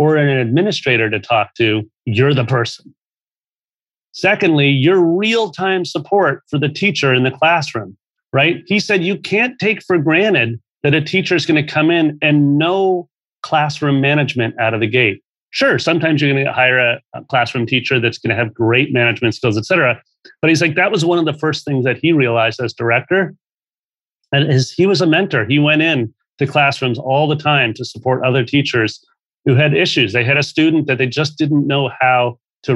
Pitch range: 125-165 Hz